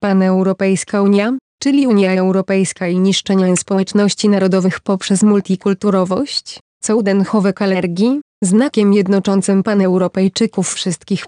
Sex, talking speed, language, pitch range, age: female, 90 wpm, Polish, 190-215 Hz, 20-39